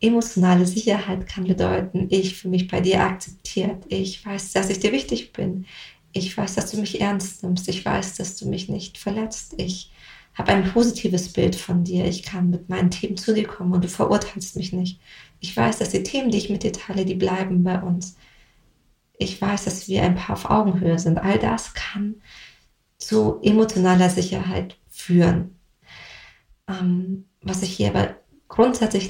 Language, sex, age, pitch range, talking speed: German, female, 30-49, 180-205 Hz, 175 wpm